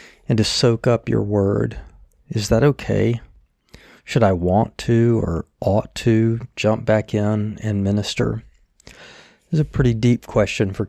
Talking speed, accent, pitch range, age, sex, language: 155 wpm, American, 100-110 Hz, 40-59, male, English